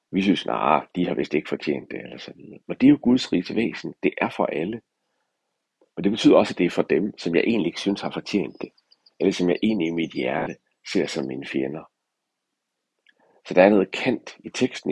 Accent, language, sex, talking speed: native, Danish, male, 235 wpm